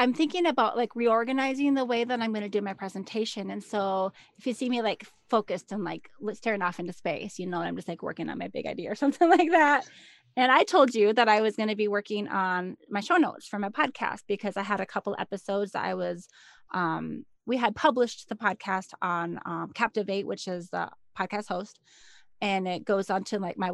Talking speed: 225 wpm